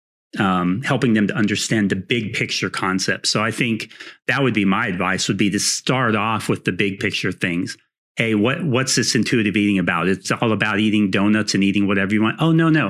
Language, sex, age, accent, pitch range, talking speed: English, male, 40-59, American, 100-125 Hz, 220 wpm